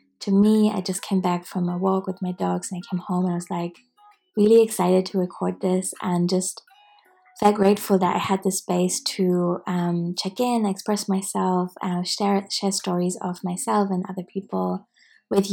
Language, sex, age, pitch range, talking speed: English, female, 20-39, 180-200 Hz, 195 wpm